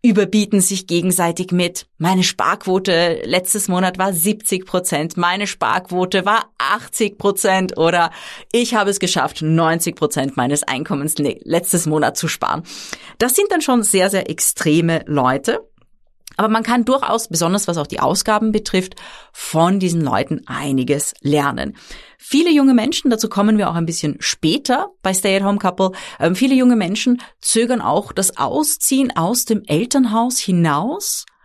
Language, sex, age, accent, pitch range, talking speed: German, female, 30-49, German, 170-225 Hz, 145 wpm